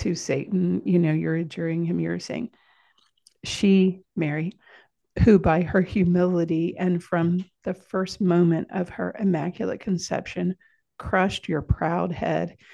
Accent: American